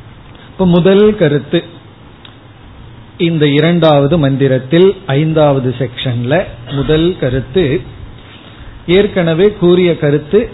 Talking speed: 75 wpm